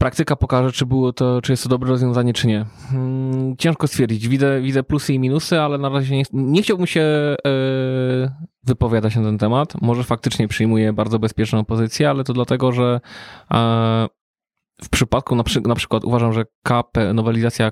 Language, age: Polish, 20-39